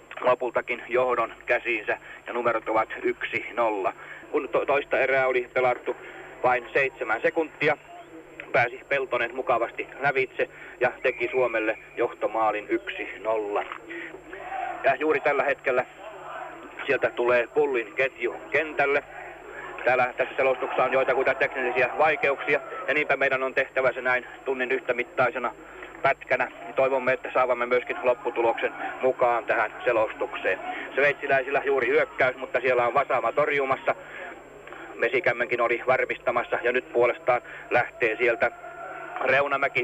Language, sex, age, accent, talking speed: Finnish, male, 30-49, native, 115 wpm